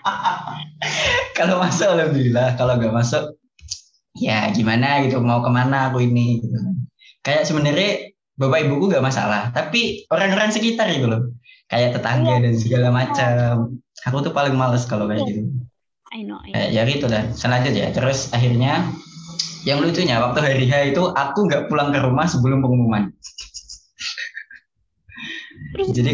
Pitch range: 120-145 Hz